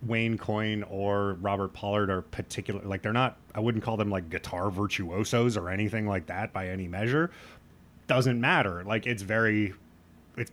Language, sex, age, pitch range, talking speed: English, male, 30-49, 85-110 Hz, 170 wpm